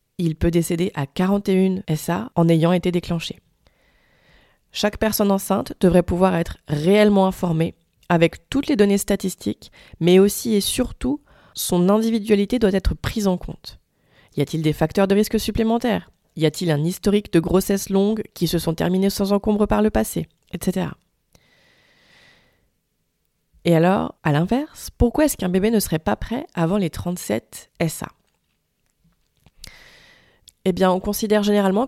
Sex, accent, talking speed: female, French, 150 wpm